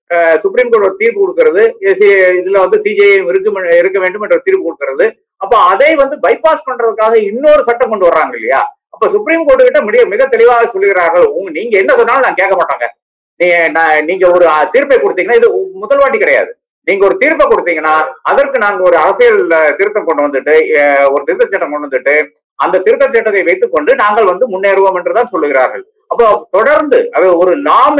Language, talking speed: Tamil, 120 wpm